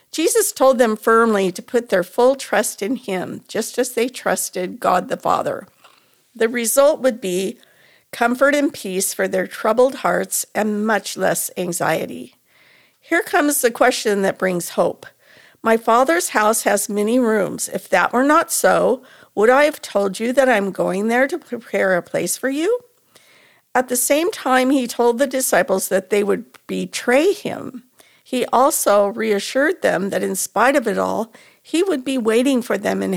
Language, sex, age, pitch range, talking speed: English, female, 50-69, 205-275 Hz, 175 wpm